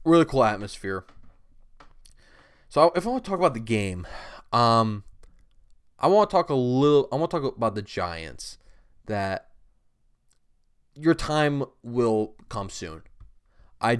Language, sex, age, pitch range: English, male, 20-39, 100-145 Hz